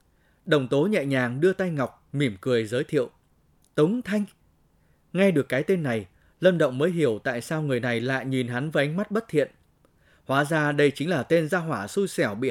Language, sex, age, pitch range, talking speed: Vietnamese, male, 20-39, 130-165 Hz, 215 wpm